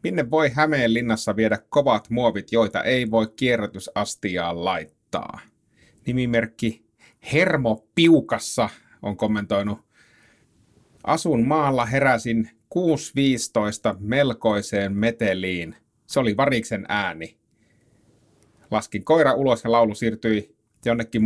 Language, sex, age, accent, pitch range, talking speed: Finnish, male, 30-49, native, 105-125 Hz, 95 wpm